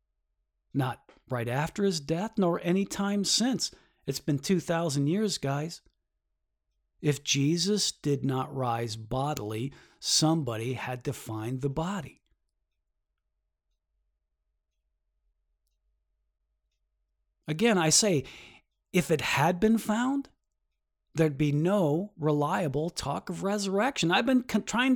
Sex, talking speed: male, 105 wpm